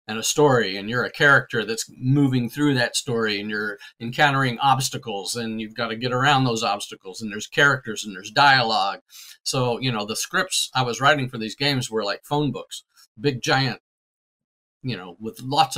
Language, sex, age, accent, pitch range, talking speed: English, male, 50-69, American, 120-150 Hz, 195 wpm